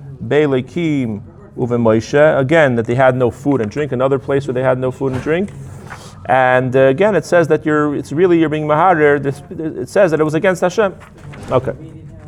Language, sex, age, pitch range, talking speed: English, male, 40-59, 130-170 Hz, 175 wpm